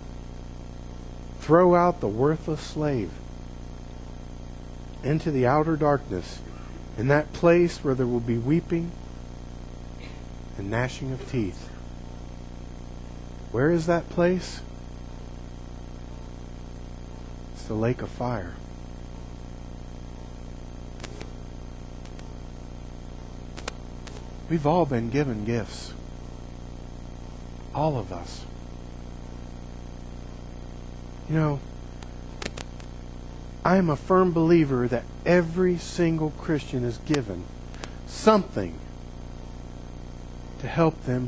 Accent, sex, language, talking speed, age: American, male, English, 80 wpm, 50-69